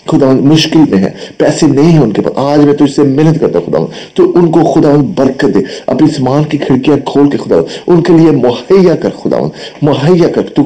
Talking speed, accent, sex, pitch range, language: 225 wpm, Indian, male, 100-140 Hz, English